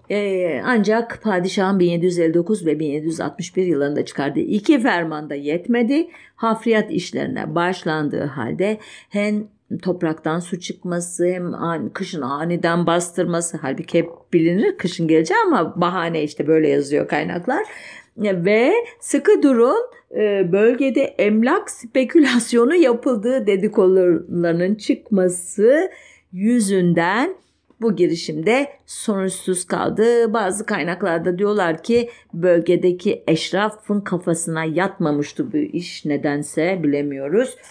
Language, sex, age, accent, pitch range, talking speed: German, female, 50-69, Turkish, 170-250 Hz, 95 wpm